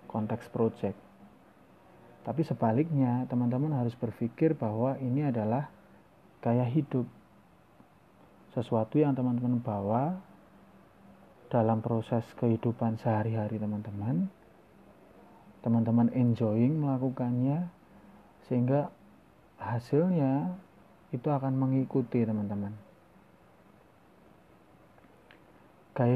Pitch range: 115-135 Hz